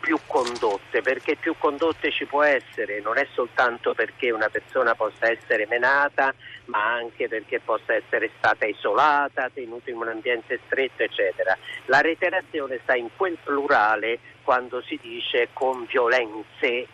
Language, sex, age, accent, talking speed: Italian, male, 50-69, native, 145 wpm